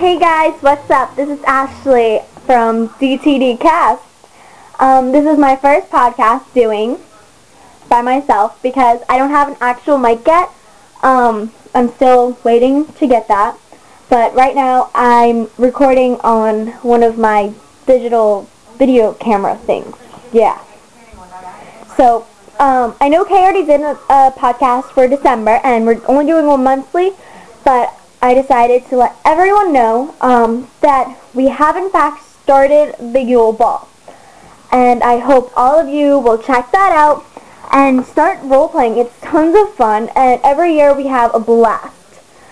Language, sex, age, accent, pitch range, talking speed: English, female, 10-29, American, 240-295 Hz, 150 wpm